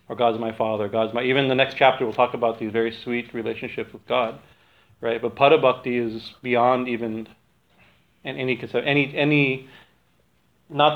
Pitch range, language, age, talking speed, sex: 115-135 Hz, English, 40-59, 170 wpm, male